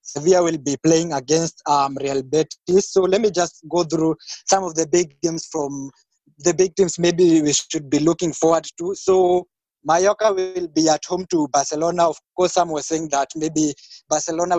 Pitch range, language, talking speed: 155-185 Hz, English, 190 wpm